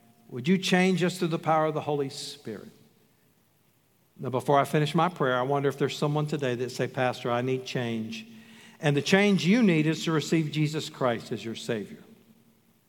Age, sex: 50-69, male